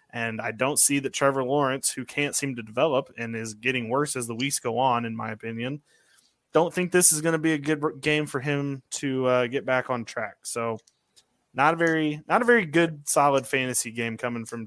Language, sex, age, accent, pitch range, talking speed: English, male, 20-39, American, 125-170 Hz, 225 wpm